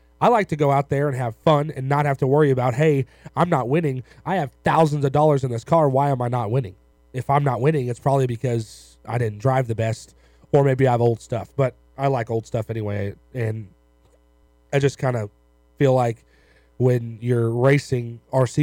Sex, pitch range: male, 110-140 Hz